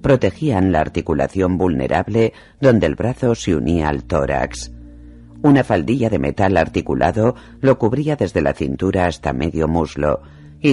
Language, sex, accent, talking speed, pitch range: Spanish, female, Spanish, 140 wpm, 75-110 Hz